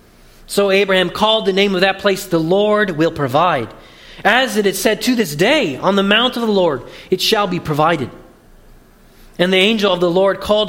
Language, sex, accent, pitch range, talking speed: English, male, American, 165-210 Hz, 200 wpm